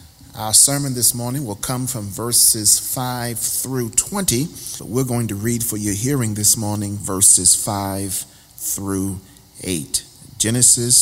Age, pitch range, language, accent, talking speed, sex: 40-59, 105-130 Hz, English, American, 140 wpm, male